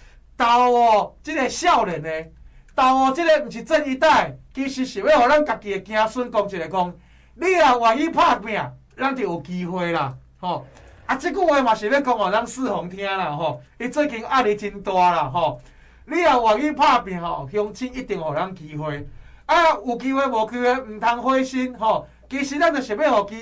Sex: male